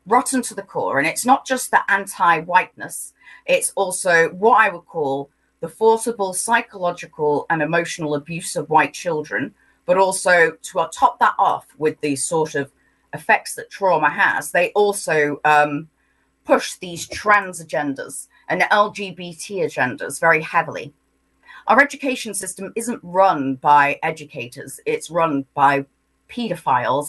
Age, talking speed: 30-49, 135 wpm